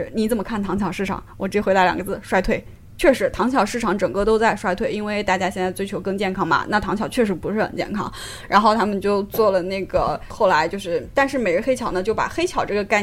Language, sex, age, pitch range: Chinese, female, 20-39, 185-220 Hz